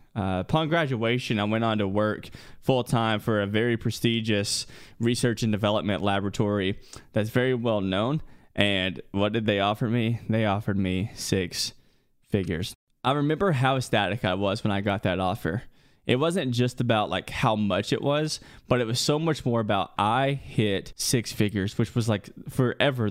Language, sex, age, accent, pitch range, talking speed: English, male, 20-39, American, 105-125 Hz, 175 wpm